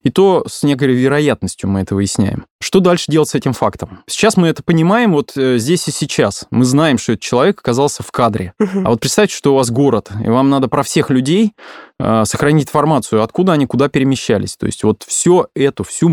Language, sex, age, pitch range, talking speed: Russian, male, 20-39, 115-150 Hz, 210 wpm